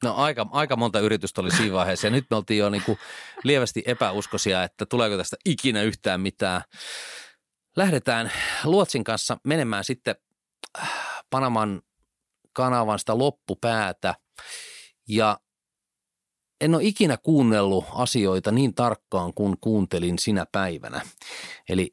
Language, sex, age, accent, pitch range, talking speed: Finnish, male, 30-49, native, 90-125 Hz, 120 wpm